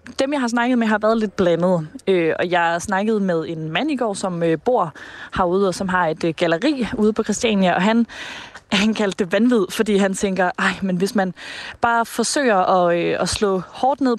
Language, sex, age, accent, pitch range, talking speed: Danish, female, 20-39, native, 180-220 Hz, 225 wpm